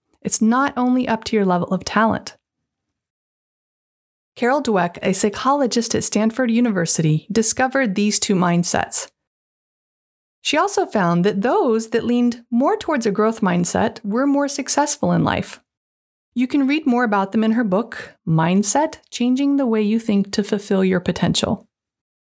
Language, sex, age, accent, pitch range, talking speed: English, female, 30-49, American, 190-255 Hz, 150 wpm